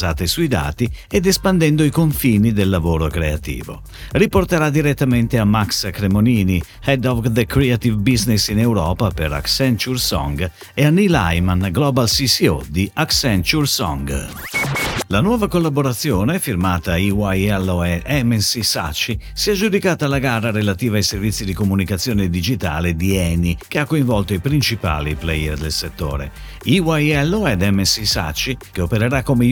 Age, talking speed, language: 50-69, 145 wpm, Italian